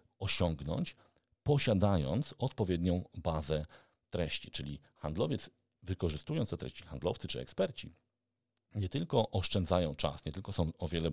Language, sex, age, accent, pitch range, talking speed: Polish, male, 40-59, native, 80-110 Hz, 120 wpm